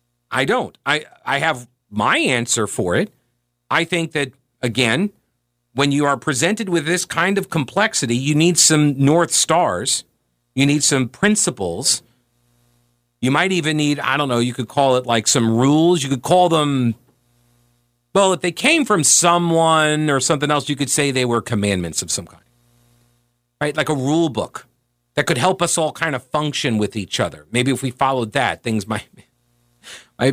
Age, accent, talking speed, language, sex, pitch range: 40-59, American, 180 wpm, English, male, 120-155 Hz